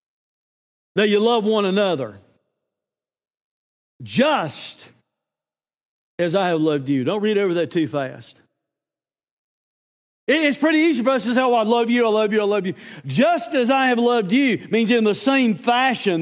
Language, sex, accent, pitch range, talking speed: English, male, American, 170-260 Hz, 165 wpm